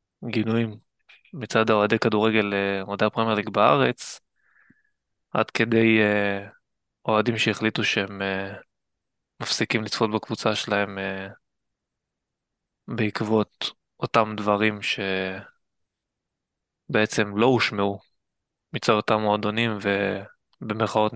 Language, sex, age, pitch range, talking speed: Hebrew, male, 20-39, 100-115 Hz, 75 wpm